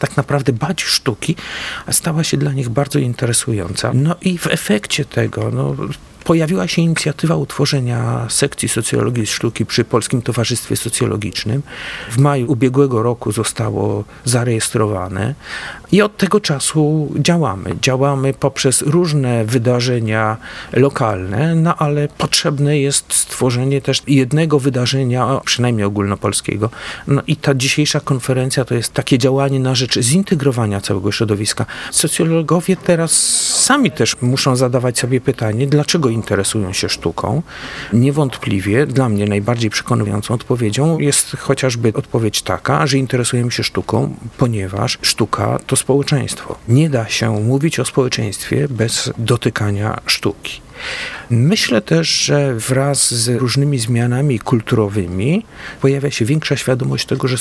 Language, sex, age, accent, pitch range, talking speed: Polish, male, 40-59, native, 115-145 Hz, 125 wpm